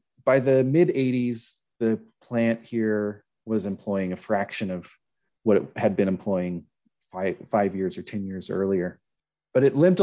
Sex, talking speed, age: male, 155 wpm, 30-49